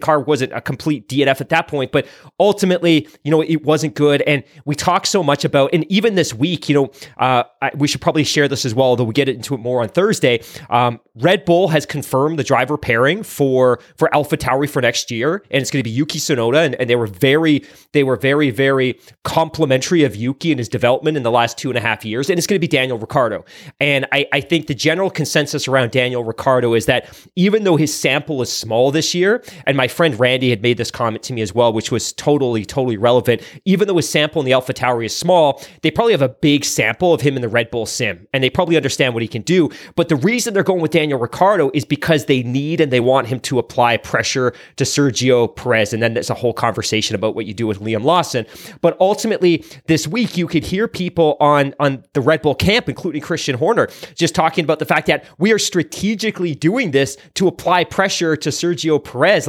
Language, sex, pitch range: English, male, 125-160 Hz